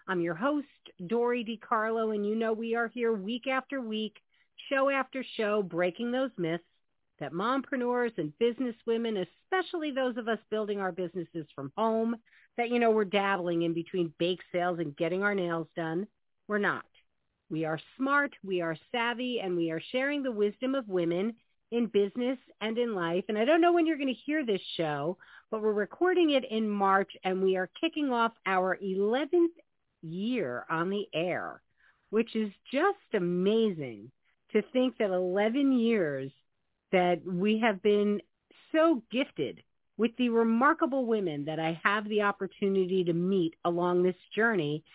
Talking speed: 170 wpm